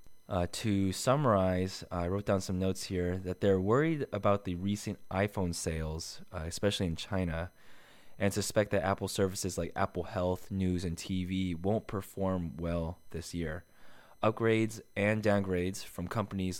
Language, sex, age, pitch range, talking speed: English, male, 20-39, 85-105 Hz, 150 wpm